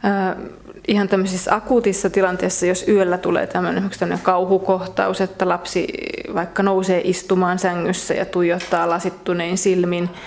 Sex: female